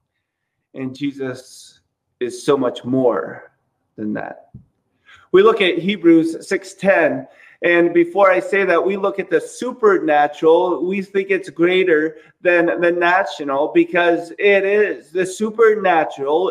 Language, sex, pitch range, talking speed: English, male, 160-225 Hz, 125 wpm